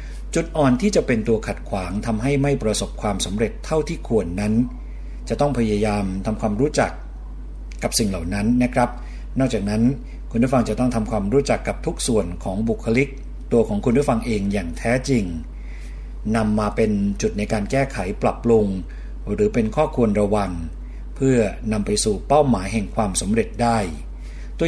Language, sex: Thai, male